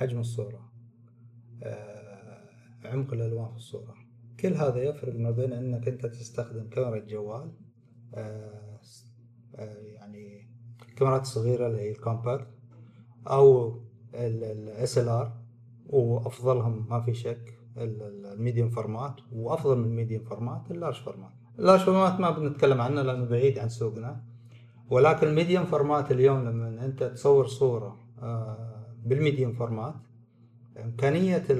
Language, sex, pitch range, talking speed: Arabic, male, 115-135 Hz, 120 wpm